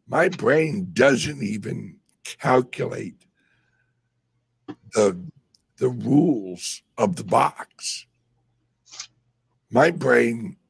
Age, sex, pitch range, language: 60-79, male, 115-130 Hz, English